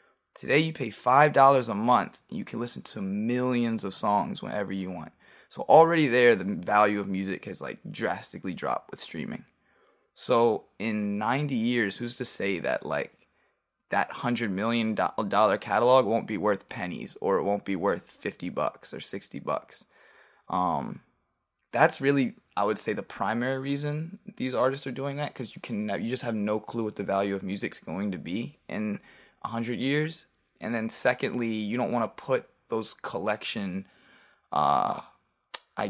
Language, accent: English, American